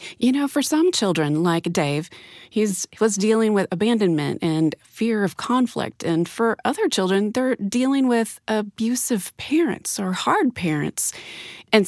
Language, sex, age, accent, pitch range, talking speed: English, female, 30-49, American, 185-240 Hz, 145 wpm